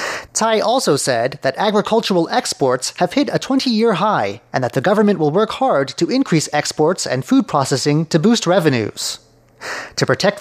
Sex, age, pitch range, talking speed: male, 30-49, 140-215 Hz, 165 wpm